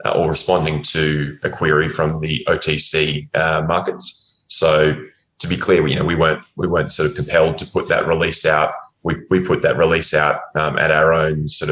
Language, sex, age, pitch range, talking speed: English, male, 20-39, 75-80 Hz, 200 wpm